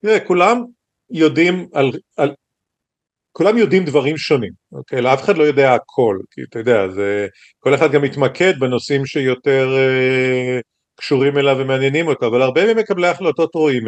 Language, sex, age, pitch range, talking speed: Hebrew, male, 50-69, 130-160 Hz, 150 wpm